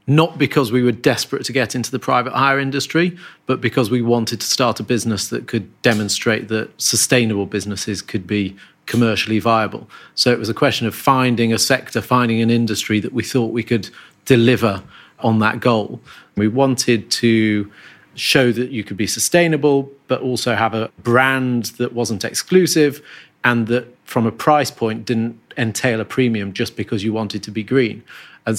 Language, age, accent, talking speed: English, 40-59, British, 180 wpm